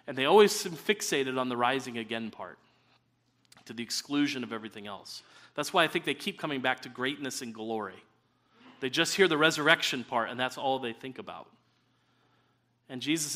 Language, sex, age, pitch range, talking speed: English, male, 40-59, 130-185 Hz, 190 wpm